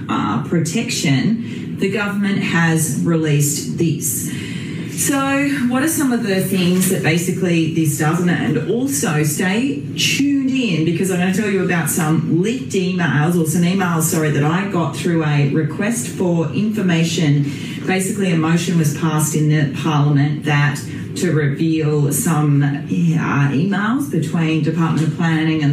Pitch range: 155-195 Hz